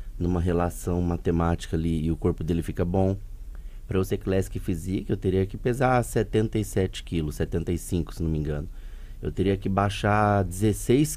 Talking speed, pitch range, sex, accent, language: 165 wpm, 95-130 Hz, male, Brazilian, Portuguese